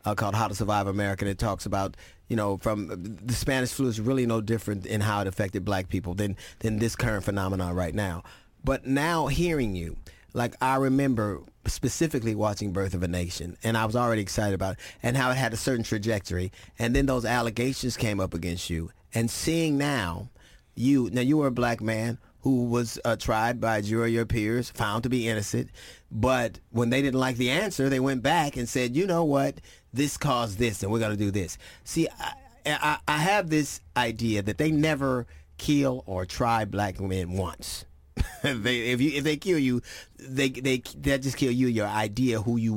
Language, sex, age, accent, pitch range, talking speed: English, male, 30-49, American, 100-130 Hz, 210 wpm